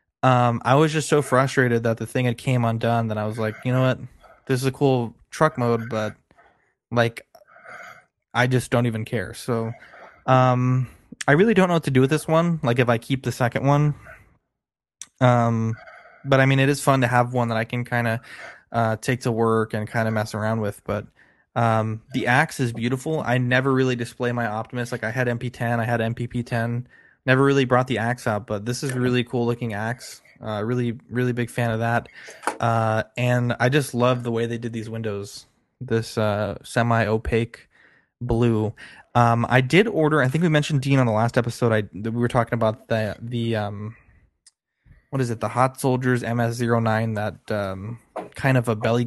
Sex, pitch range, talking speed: male, 115-130 Hz, 205 wpm